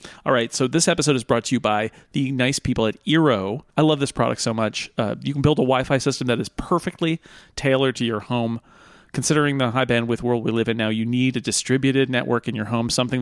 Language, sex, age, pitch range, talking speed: English, male, 40-59, 115-140 Hz, 245 wpm